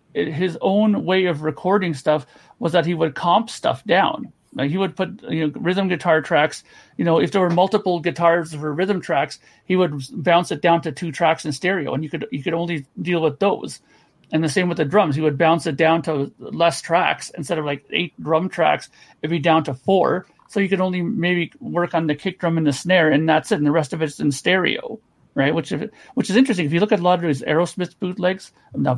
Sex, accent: male, American